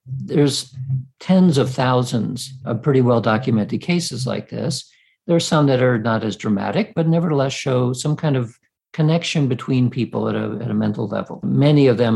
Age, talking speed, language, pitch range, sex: 50-69, 180 wpm, English, 115-150 Hz, male